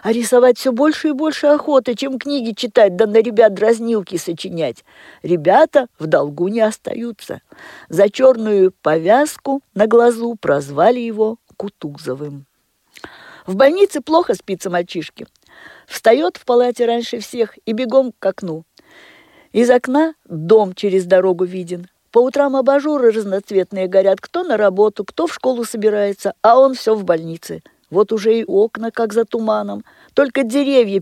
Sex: female